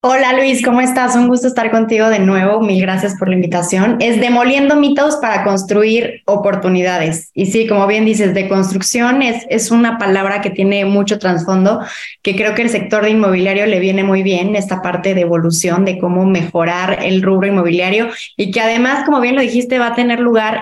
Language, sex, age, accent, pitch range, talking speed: Spanish, female, 20-39, Mexican, 190-225 Hz, 200 wpm